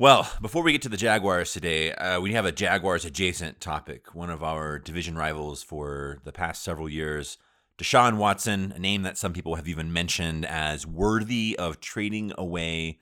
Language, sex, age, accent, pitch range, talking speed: English, male, 30-49, American, 80-95 Hz, 185 wpm